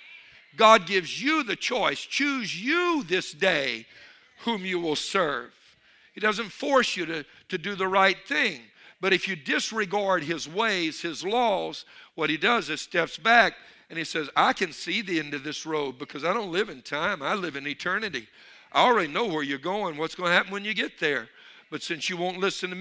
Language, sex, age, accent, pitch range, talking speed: English, male, 60-79, American, 170-225 Hz, 205 wpm